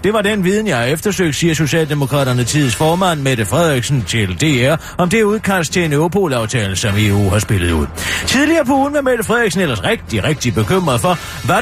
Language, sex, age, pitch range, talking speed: Danish, male, 40-59, 115-185 Hz, 195 wpm